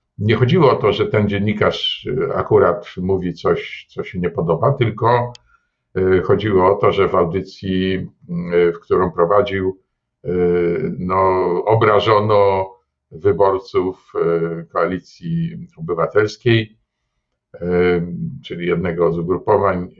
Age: 50-69